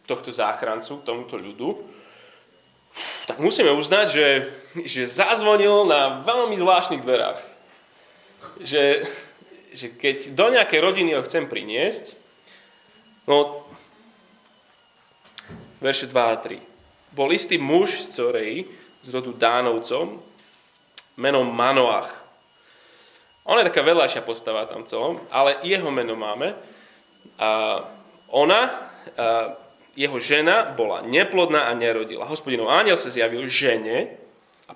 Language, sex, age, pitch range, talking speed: Slovak, male, 20-39, 125-185 Hz, 110 wpm